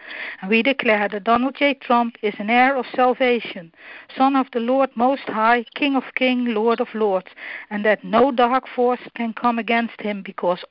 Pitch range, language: 210-255 Hz, English